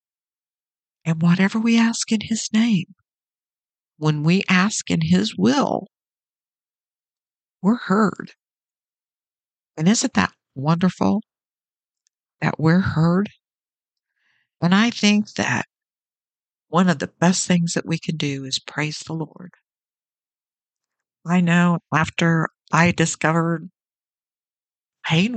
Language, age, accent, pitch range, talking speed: English, 60-79, American, 150-185 Hz, 105 wpm